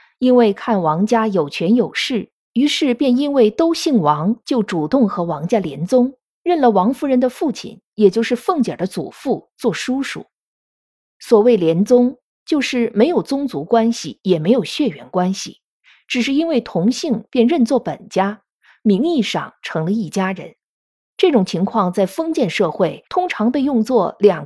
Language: Chinese